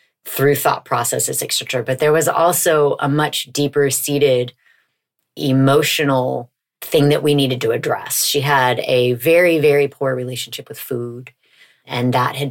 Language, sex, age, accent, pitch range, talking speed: English, female, 30-49, American, 125-150 Hz, 145 wpm